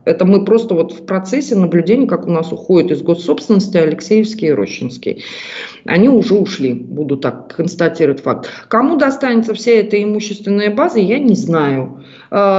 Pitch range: 185-225 Hz